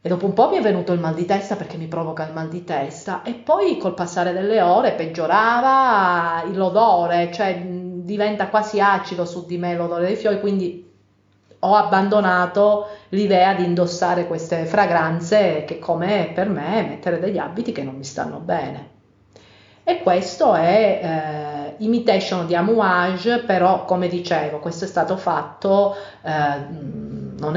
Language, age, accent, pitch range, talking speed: Italian, 40-59, native, 150-195 Hz, 155 wpm